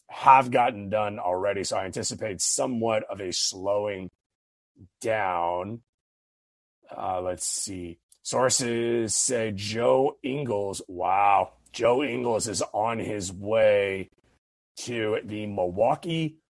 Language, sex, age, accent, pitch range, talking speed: English, male, 30-49, American, 100-130 Hz, 105 wpm